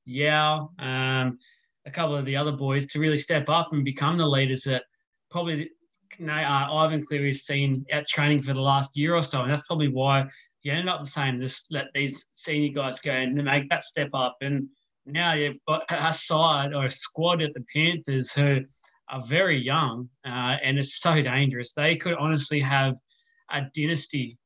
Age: 20-39